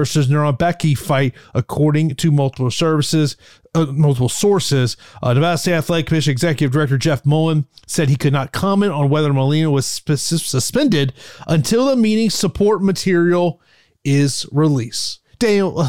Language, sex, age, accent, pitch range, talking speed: English, male, 30-49, American, 150-210 Hz, 145 wpm